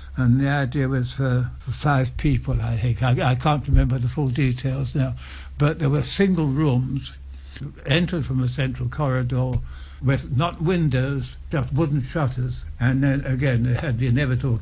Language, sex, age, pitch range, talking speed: English, male, 60-79, 125-150 Hz, 160 wpm